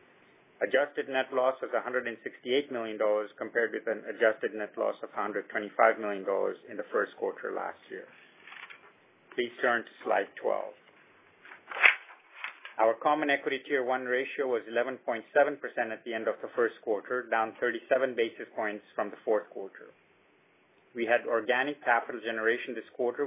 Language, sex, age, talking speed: English, male, 40-59, 145 wpm